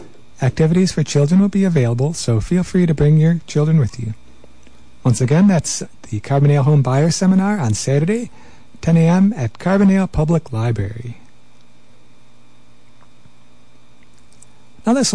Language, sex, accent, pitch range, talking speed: English, male, American, 105-175 Hz, 130 wpm